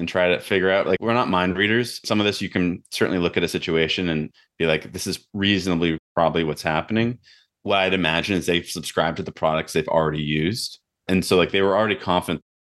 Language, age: English, 20-39